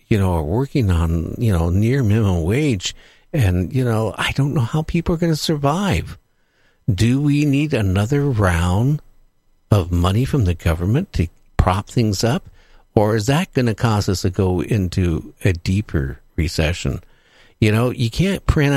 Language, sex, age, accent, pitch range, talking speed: English, male, 60-79, American, 90-130 Hz, 175 wpm